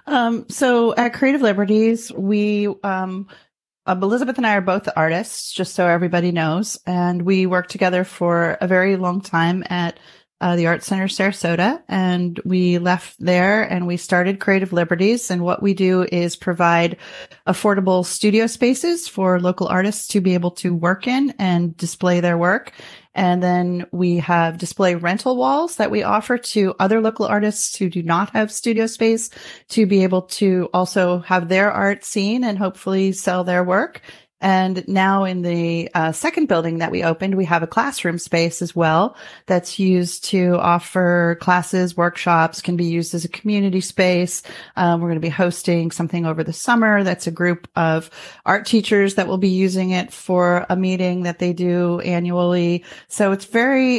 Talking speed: 175 wpm